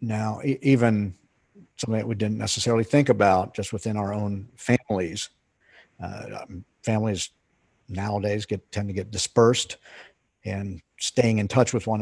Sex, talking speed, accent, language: male, 140 wpm, American, English